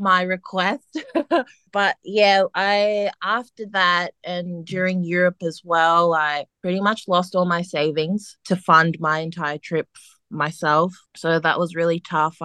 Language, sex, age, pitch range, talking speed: English, female, 20-39, 155-185 Hz, 145 wpm